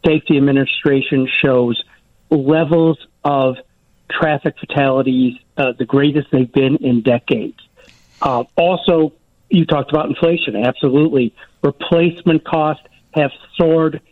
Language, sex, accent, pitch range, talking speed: English, male, American, 130-165 Hz, 105 wpm